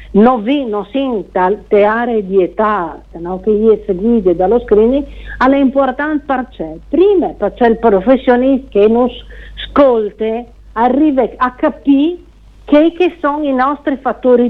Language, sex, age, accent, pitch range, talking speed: Italian, female, 50-69, native, 195-260 Hz, 135 wpm